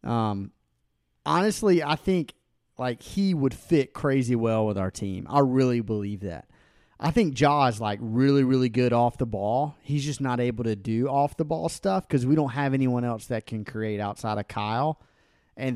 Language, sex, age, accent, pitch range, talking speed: English, male, 30-49, American, 115-140 Hz, 195 wpm